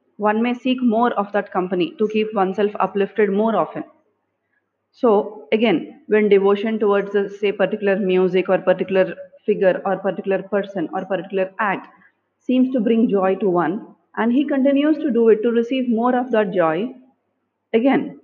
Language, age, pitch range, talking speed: English, 30-49, 200-265 Hz, 160 wpm